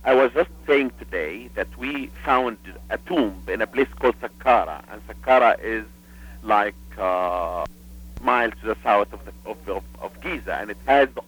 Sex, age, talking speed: male, 50-69, 180 wpm